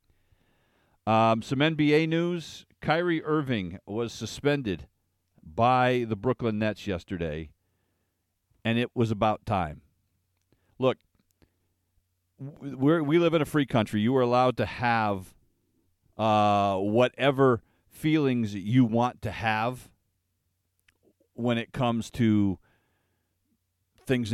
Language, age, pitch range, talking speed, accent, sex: English, 40-59, 95-130 Hz, 105 wpm, American, male